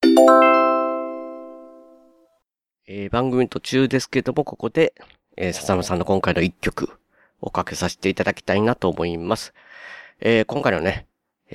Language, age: Japanese, 40-59